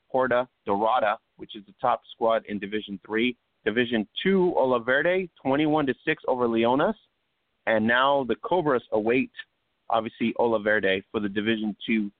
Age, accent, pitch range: 30-49, American, 110-135 Hz